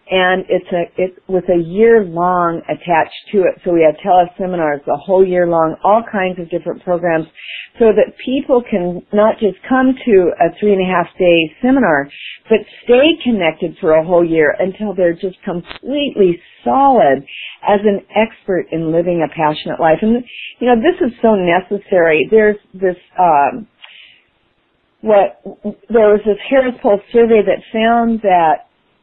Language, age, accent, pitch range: English, 50-69, American, 175-230 Hz